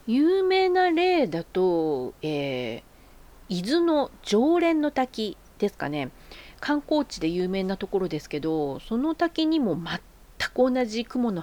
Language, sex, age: Japanese, female, 40-59